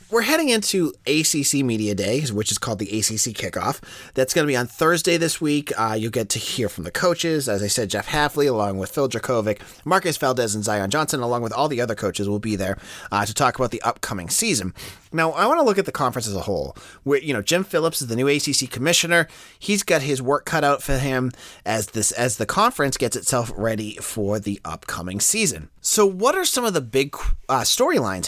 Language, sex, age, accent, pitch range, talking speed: English, male, 30-49, American, 105-155 Hz, 225 wpm